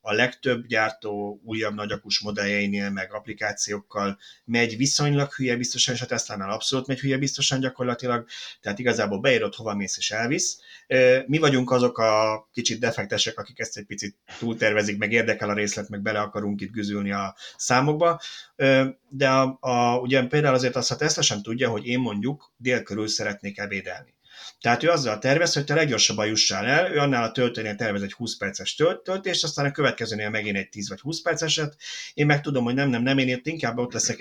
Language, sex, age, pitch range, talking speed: Hungarian, male, 30-49, 105-135 Hz, 190 wpm